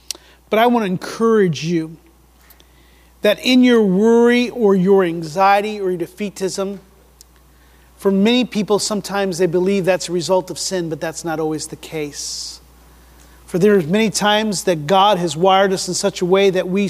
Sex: male